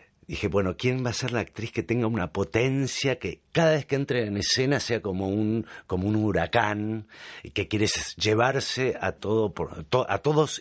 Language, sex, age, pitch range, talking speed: Spanish, male, 50-69, 100-145 Hz, 190 wpm